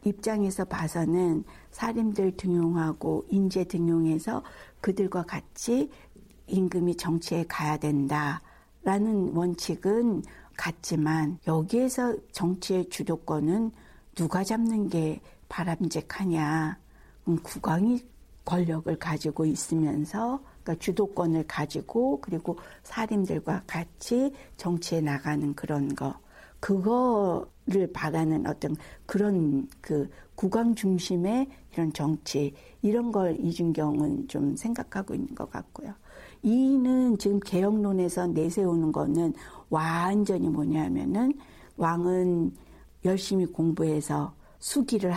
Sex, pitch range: female, 160-200 Hz